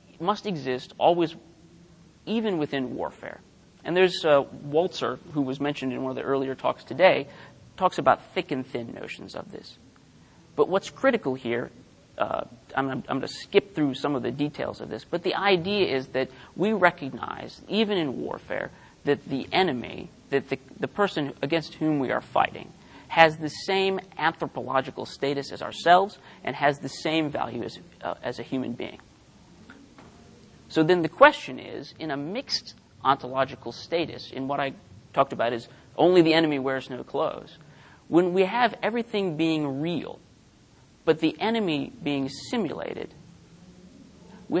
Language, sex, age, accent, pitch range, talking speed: English, male, 40-59, American, 135-175 Hz, 160 wpm